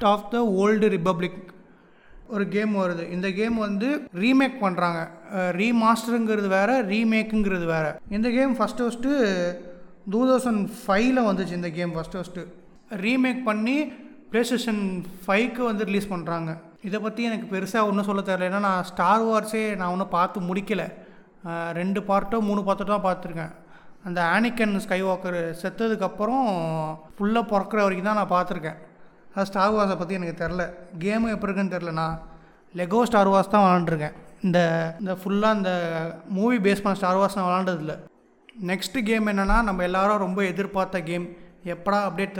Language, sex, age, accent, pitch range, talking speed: Tamil, male, 30-49, native, 175-210 Hz, 145 wpm